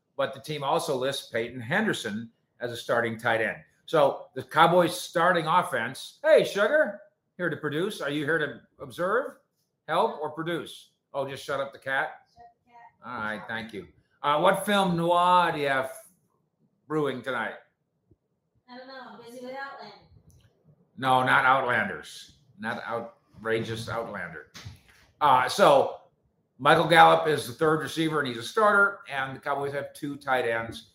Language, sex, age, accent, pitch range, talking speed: English, male, 50-69, American, 125-190 Hz, 155 wpm